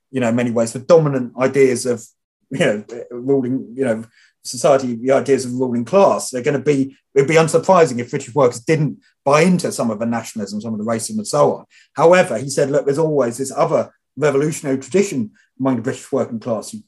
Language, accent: English, British